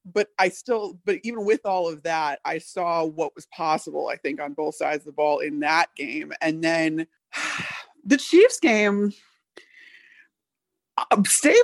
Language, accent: English, American